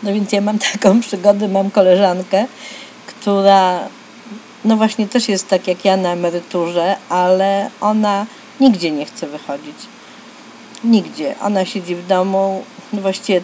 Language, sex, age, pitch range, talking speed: Polish, female, 40-59, 195-260 Hz, 135 wpm